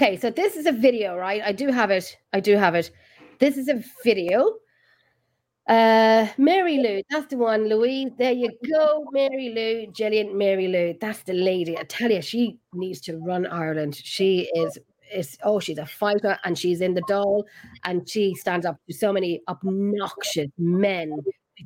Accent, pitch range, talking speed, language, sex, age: Irish, 175-240 Hz, 185 wpm, English, female, 30-49